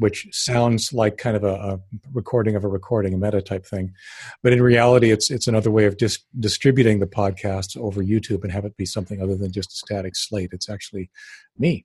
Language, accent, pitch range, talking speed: English, American, 100-125 Hz, 225 wpm